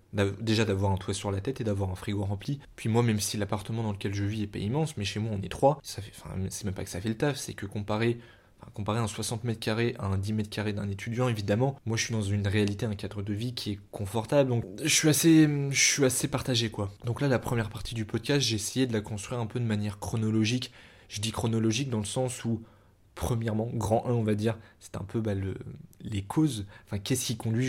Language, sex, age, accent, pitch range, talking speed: French, male, 20-39, French, 100-120 Hz, 260 wpm